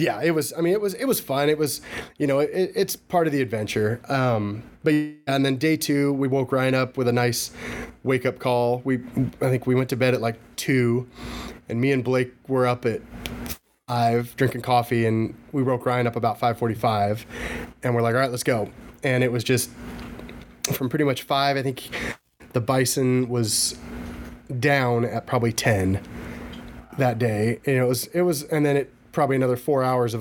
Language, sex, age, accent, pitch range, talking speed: English, male, 30-49, American, 120-140 Hz, 210 wpm